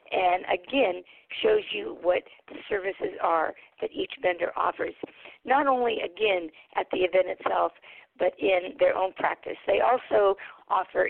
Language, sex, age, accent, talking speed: English, female, 50-69, American, 145 wpm